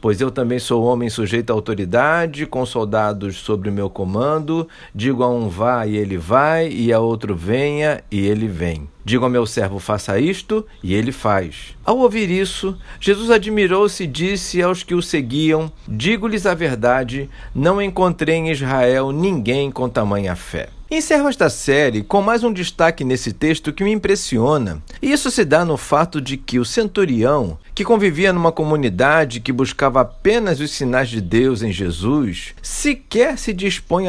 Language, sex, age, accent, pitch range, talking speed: Portuguese, male, 50-69, Brazilian, 115-190 Hz, 170 wpm